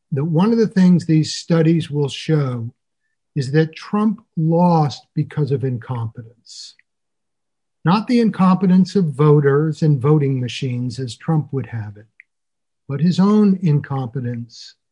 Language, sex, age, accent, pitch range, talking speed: English, male, 50-69, American, 130-160 Hz, 135 wpm